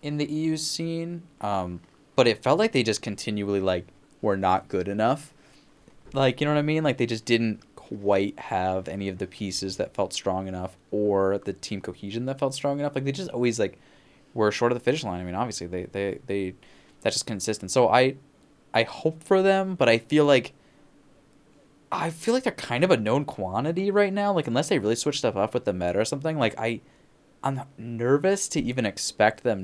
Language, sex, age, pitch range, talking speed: English, male, 20-39, 100-145 Hz, 215 wpm